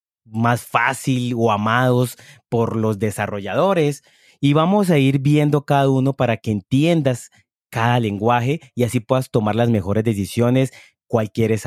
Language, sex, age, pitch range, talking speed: Spanish, male, 30-49, 105-130 Hz, 145 wpm